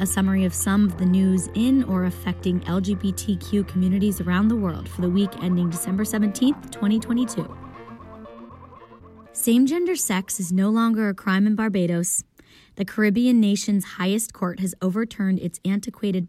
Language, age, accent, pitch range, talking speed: English, 20-39, American, 180-225 Hz, 145 wpm